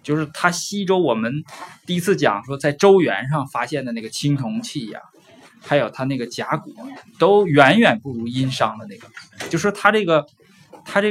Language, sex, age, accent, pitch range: Chinese, male, 20-39, native, 135-205 Hz